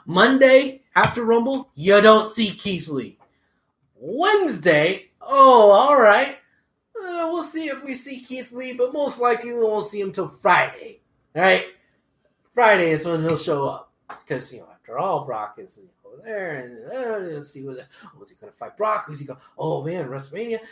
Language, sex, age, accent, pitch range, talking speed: English, male, 30-49, American, 180-245 Hz, 190 wpm